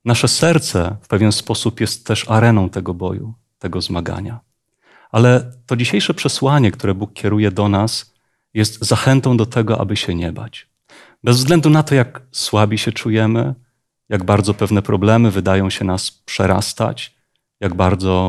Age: 30-49